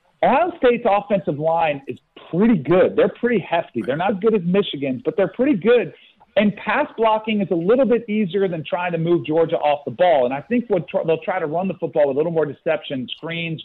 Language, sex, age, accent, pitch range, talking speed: English, male, 40-59, American, 155-205 Hz, 230 wpm